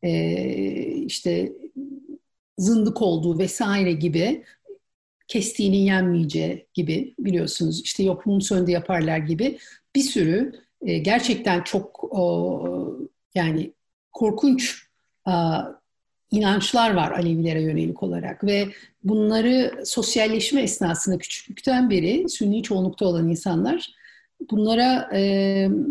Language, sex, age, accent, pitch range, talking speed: Turkish, female, 50-69, native, 185-240 Hz, 95 wpm